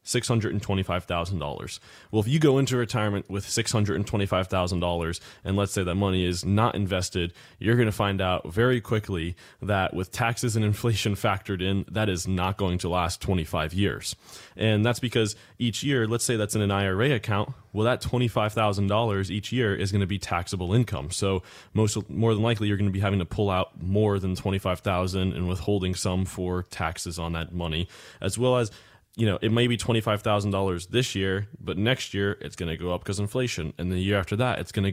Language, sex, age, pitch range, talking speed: English, male, 20-39, 90-110 Hz, 200 wpm